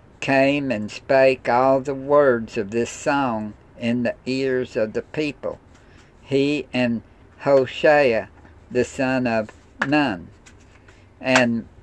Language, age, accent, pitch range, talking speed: English, 60-79, American, 110-135 Hz, 115 wpm